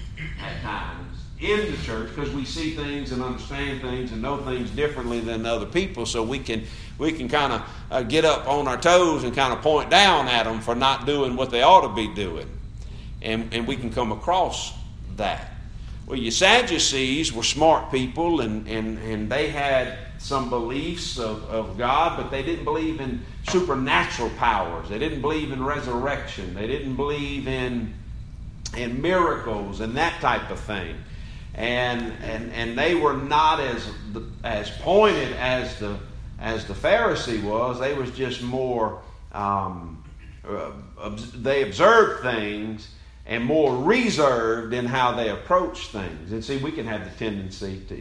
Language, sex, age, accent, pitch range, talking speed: English, male, 50-69, American, 105-135 Hz, 165 wpm